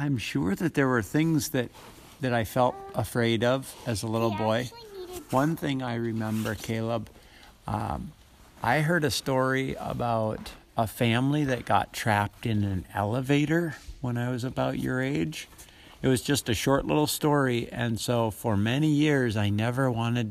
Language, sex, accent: English, male, American